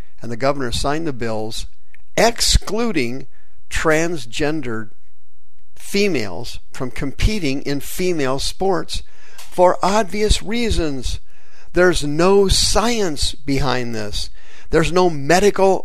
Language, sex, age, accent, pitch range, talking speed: English, male, 50-69, American, 115-160 Hz, 95 wpm